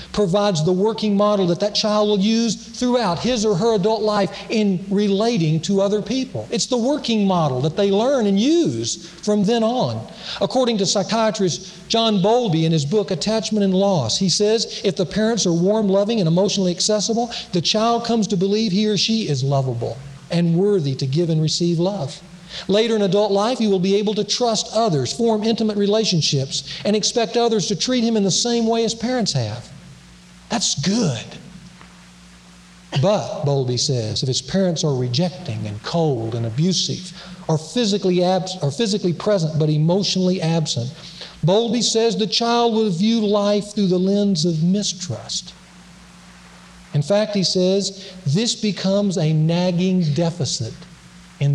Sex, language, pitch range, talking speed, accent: male, English, 165-215 Hz, 165 wpm, American